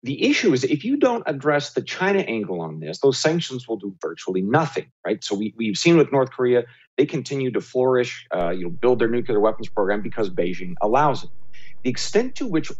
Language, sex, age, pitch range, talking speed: English, male, 40-59, 105-160 Hz, 215 wpm